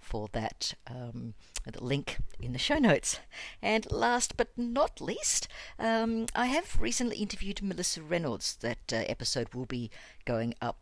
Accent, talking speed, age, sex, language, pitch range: Australian, 155 wpm, 60-79, female, English, 115-130 Hz